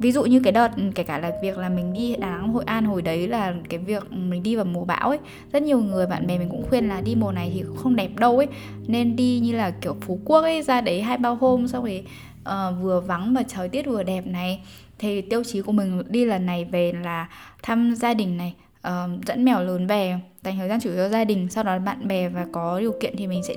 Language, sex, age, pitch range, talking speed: Vietnamese, female, 10-29, 185-245 Hz, 265 wpm